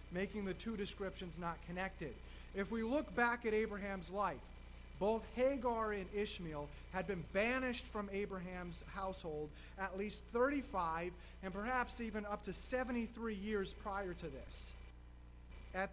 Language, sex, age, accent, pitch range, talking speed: English, male, 30-49, American, 155-210 Hz, 140 wpm